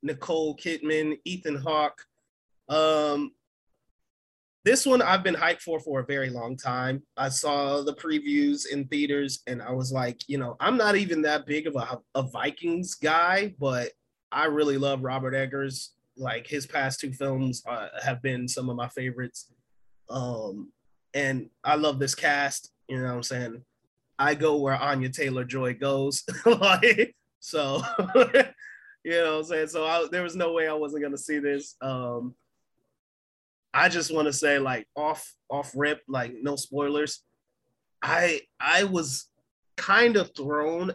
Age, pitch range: 20-39, 130-155 Hz